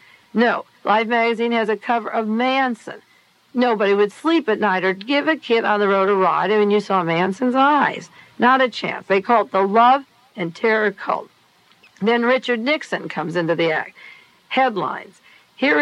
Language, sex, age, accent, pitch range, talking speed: English, female, 60-79, American, 195-250 Hz, 185 wpm